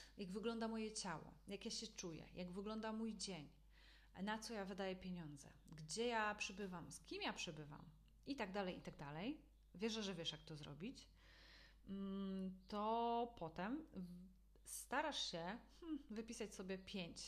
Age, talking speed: 30-49, 150 wpm